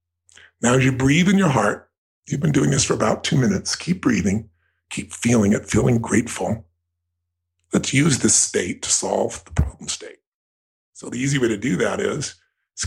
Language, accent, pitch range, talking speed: English, American, 85-140 Hz, 185 wpm